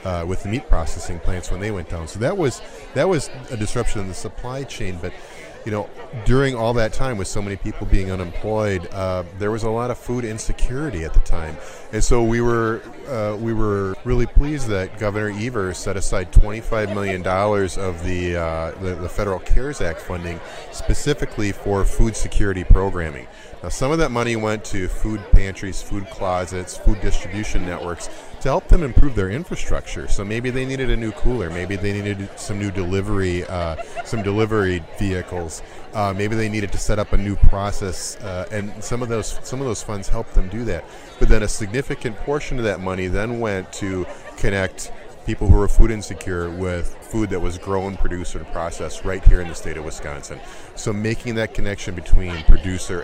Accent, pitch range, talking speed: American, 90-110 Hz, 200 wpm